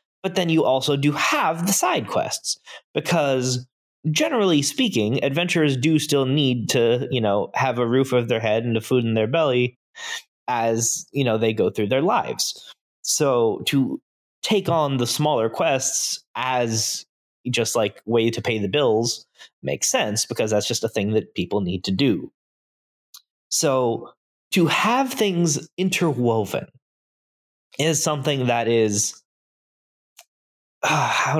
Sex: male